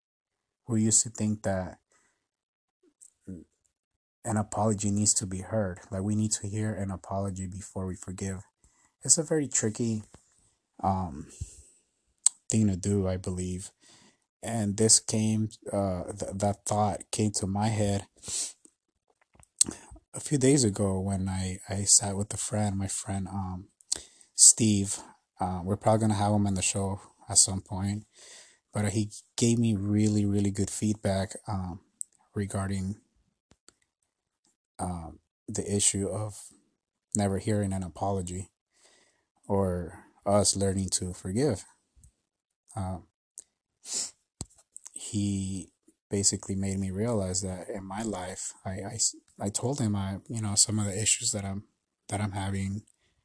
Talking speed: 135 wpm